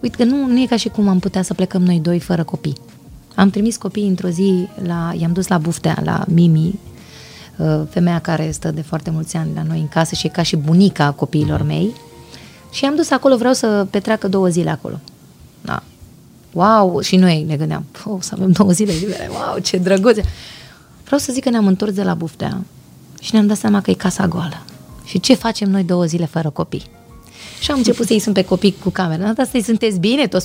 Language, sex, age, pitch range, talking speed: Romanian, female, 20-39, 180-235 Hz, 215 wpm